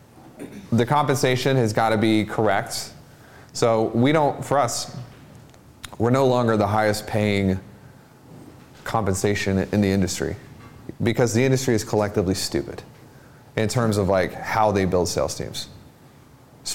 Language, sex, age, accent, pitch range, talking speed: English, male, 30-49, American, 105-135 Hz, 135 wpm